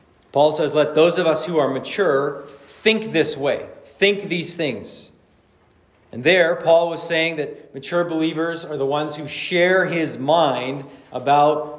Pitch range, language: 140-185 Hz, English